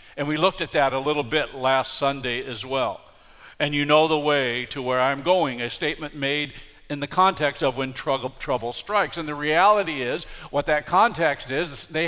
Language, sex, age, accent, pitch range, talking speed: English, male, 50-69, American, 140-175 Hz, 205 wpm